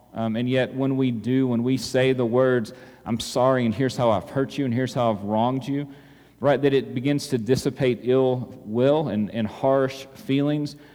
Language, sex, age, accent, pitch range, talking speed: English, male, 40-59, American, 115-140 Hz, 205 wpm